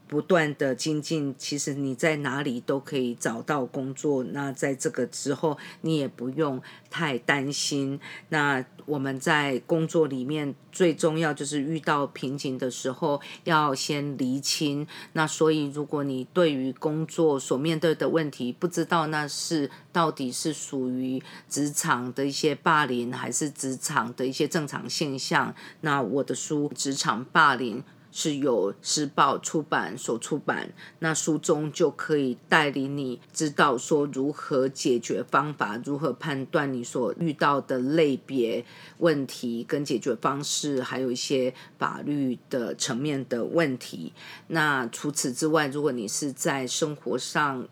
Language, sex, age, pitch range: English, female, 40-59, 130-155 Hz